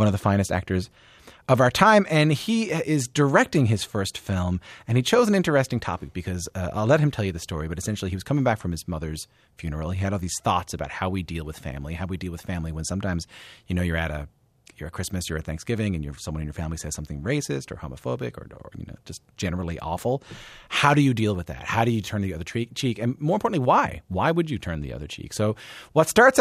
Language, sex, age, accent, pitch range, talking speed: English, male, 30-49, American, 90-130 Hz, 260 wpm